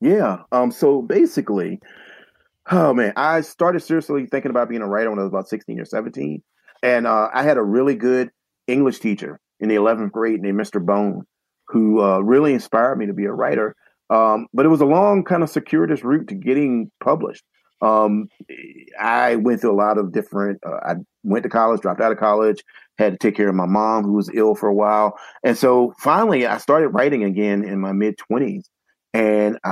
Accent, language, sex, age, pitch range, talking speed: American, English, male, 40-59, 105-140 Hz, 205 wpm